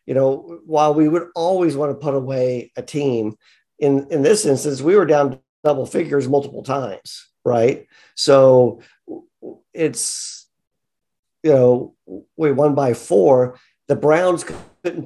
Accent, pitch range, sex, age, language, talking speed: American, 125-150 Hz, male, 50-69, English, 140 wpm